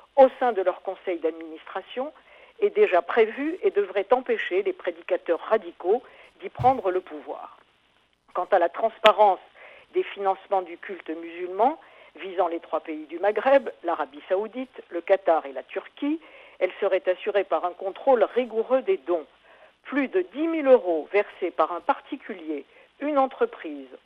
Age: 50-69